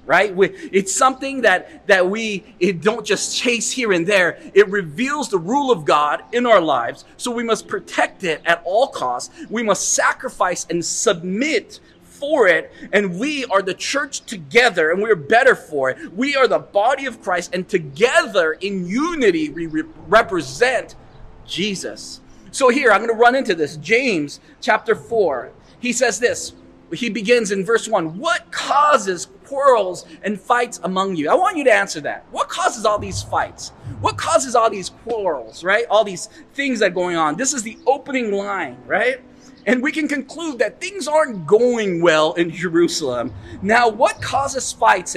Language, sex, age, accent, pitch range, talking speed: English, male, 40-59, American, 185-270 Hz, 180 wpm